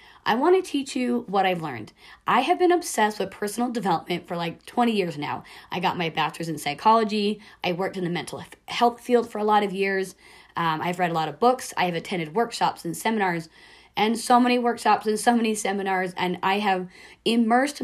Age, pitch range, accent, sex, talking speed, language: 30-49, 180-230 Hz, American, female, 210 wpm, English